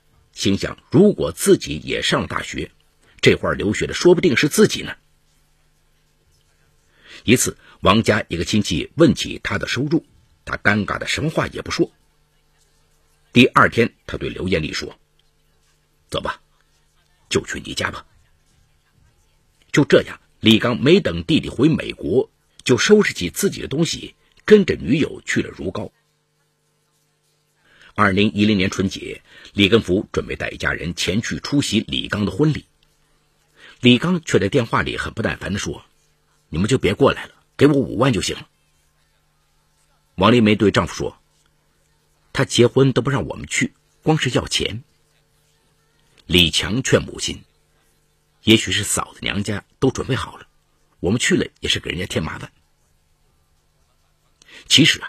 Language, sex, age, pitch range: Chinese, male, 50-69, 75-120 Hz